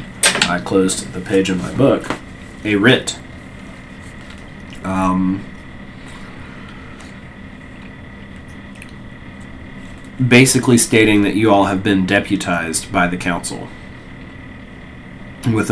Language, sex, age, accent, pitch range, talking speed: English, male, 20-39, American, 65-95 Hz, 85 wpm